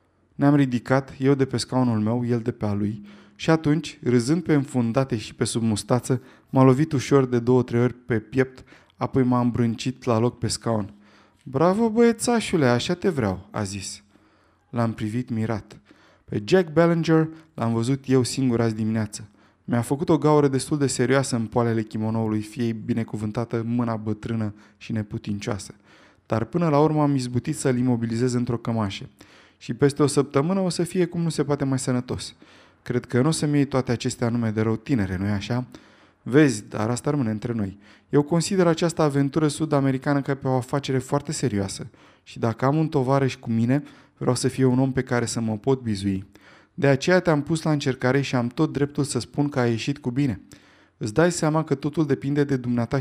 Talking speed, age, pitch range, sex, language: 190 wpm, 20-39, 115-145 Hz, male, Romanian